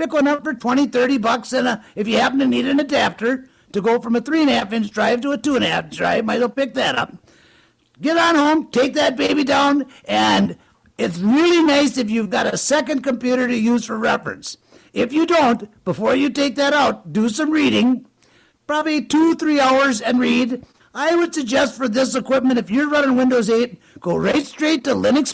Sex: male